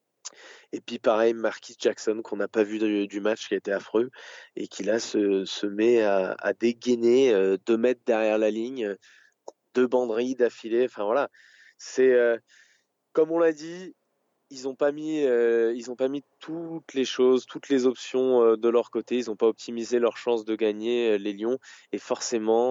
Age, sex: 20-39, male